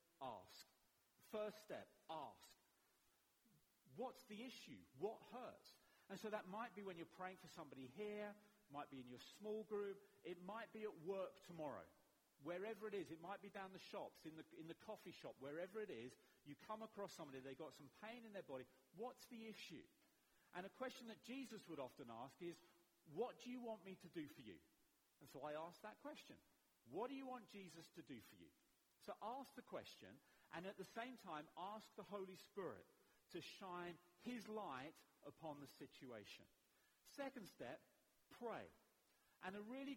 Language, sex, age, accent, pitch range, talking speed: English, male, 40-59, British, 165-220 Hz, 190 wpm